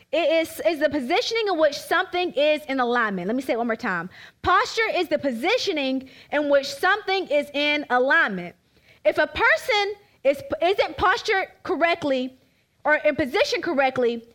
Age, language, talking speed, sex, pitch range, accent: 20-39, English, 165 wpm, female, 260-345 Hz, American